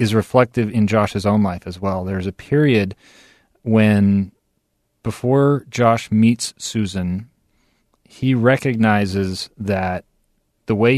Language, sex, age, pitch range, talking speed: English, male, 40-59, 105-125 Hz, 115 wpm